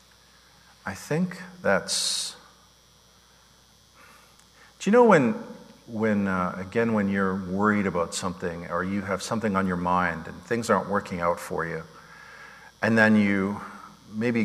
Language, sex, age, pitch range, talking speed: English, male, 50-69, 95-120 Hz, 135 wpm